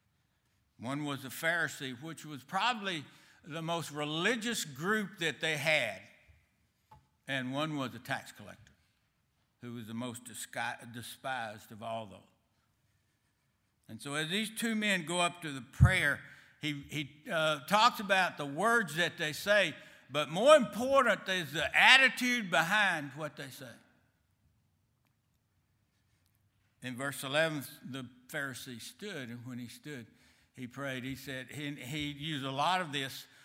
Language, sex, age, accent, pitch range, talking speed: English, male, 60-79, American, 120-165 Hz, 145 wpm